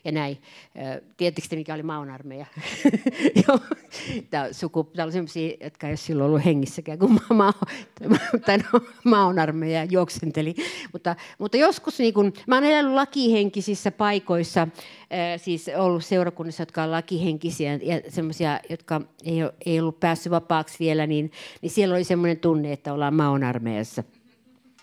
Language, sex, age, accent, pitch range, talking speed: Finnish, female, 50-69, native, 155-205 Hz, 135 wpm